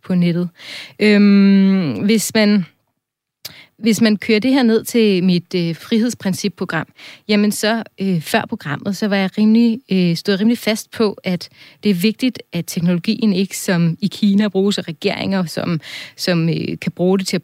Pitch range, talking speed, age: 175-205 Hz, 170 wpm, 30-49